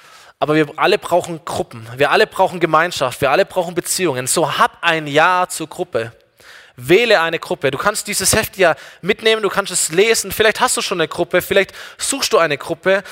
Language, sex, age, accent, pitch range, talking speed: German, male, 20-39, German, 160-210 Hz, 195 wpm